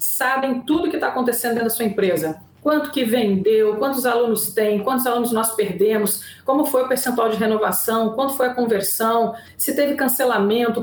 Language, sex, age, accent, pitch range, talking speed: Portuguese, female, 40-59, Brazilian, 230-285 Hz, 185 wpm